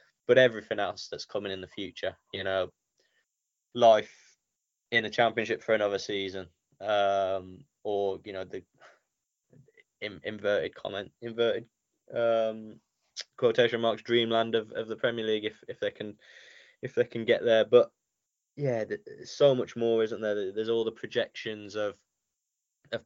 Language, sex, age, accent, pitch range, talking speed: English, male, 10-29, British, 100-120 Hz, 150 wpm